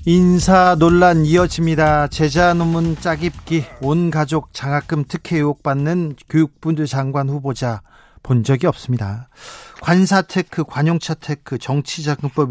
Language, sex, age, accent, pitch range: Korean, male, 40-59, native, 140-190 Hz